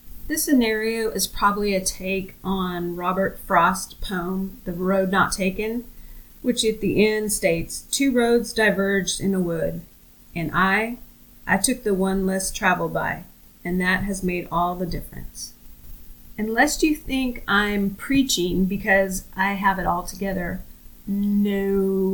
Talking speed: 145 wpm